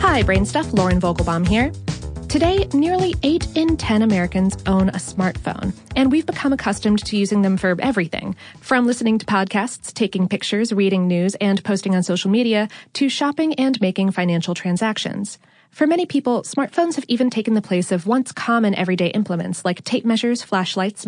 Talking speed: 170 wpm